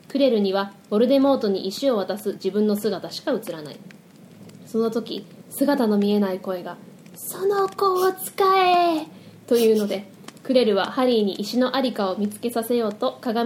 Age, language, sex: 20-39, Japanese, female